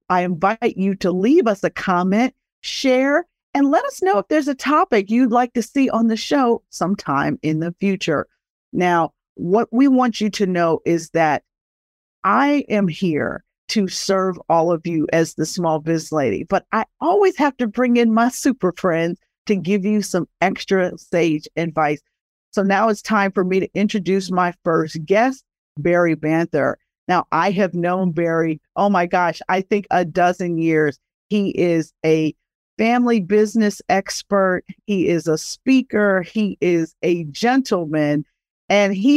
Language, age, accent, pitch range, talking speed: English, 50-69, American, 170-220 Hz, 165 wpm